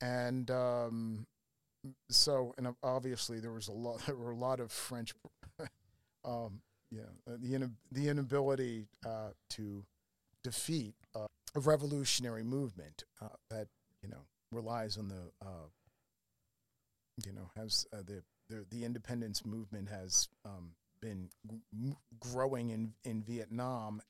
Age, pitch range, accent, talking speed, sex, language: 40-59, 100-125 Hz, American, 135 wpm, male, English